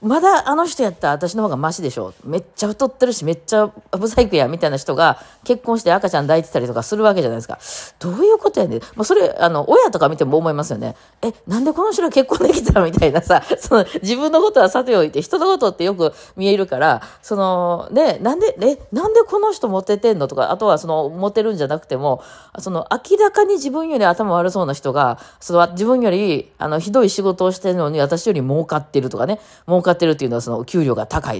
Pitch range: 155-245 Hz